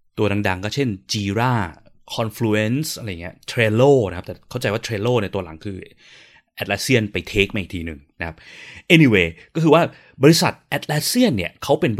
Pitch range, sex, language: 100-145 Hz, male, Thai